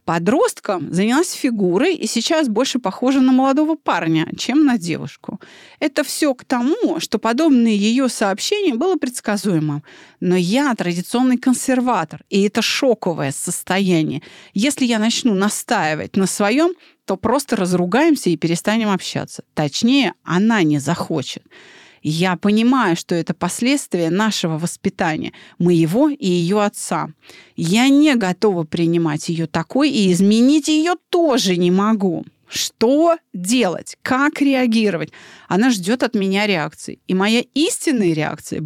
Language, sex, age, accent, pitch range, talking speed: Russian, female, 30-49, native, 180-265 Hz, 130 wpm